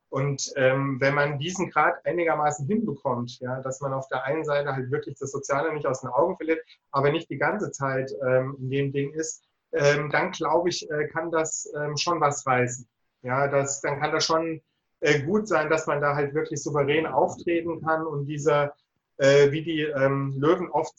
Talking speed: 190 wpm